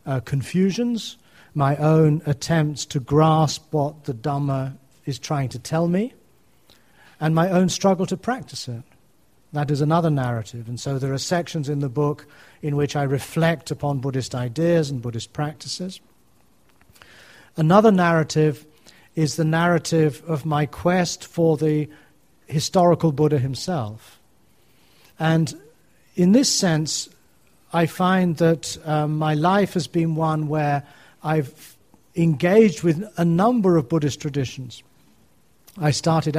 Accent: British